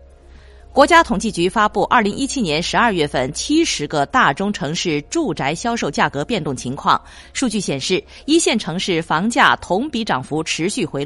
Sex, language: female, Chinese